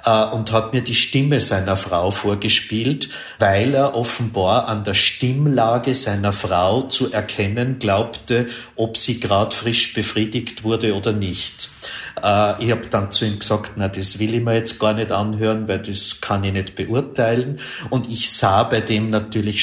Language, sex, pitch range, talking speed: German, male, 105-120 Hz, 165 wpm